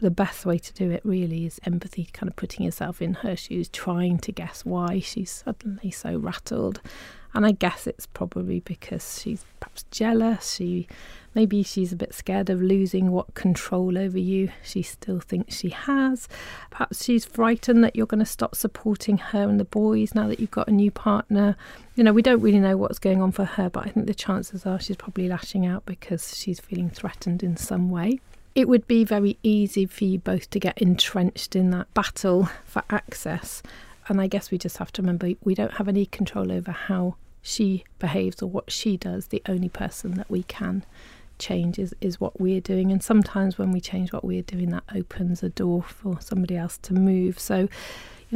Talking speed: 205 wpm